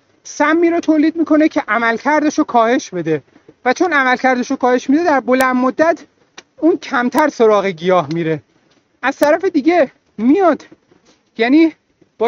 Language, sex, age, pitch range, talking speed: Persian, male, 40-59, 230-310 Hz, 140 wpm